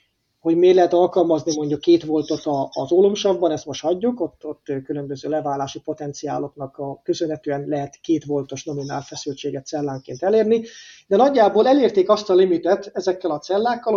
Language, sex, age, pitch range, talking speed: Hungarian, male, 30-49, 150-195 Hz, 145 wpm